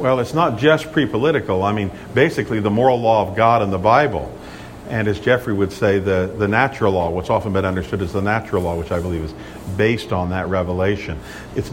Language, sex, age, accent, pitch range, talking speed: English, male, 50-69, American, 100-135 Hz, 215 wpm